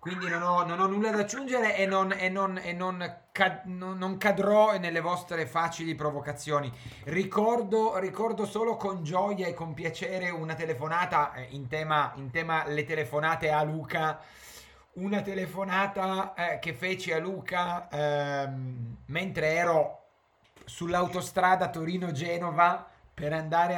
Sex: male